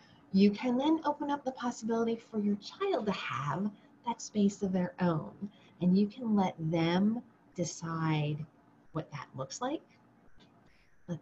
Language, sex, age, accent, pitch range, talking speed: English, female, 30-49, American, 175-240 Hz, 150 wpm